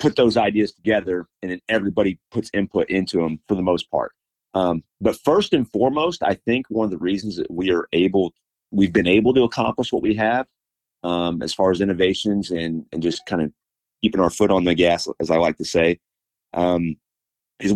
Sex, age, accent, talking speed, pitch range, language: male, 40-59, American, 205 wpm, 90-110 Hz, English